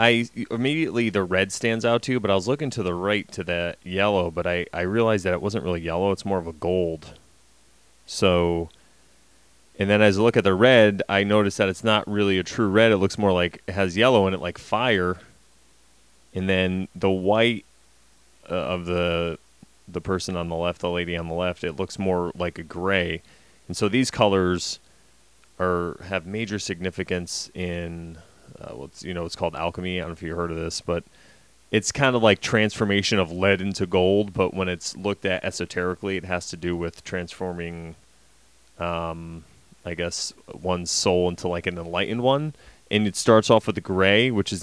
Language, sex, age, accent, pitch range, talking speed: English, male, 30-49, American, 85-100 Hz, 200 wpm